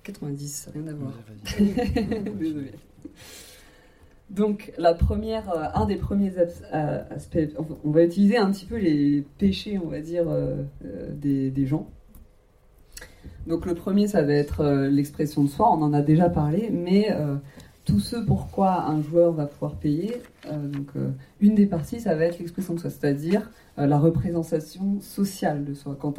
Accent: French